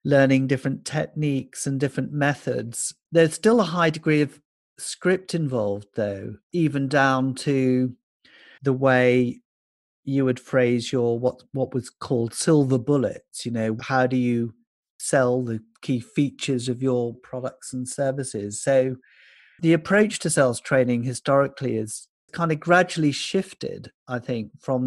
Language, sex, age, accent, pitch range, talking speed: English, male, 40-59, British, 120-150 Hz, 140 wpm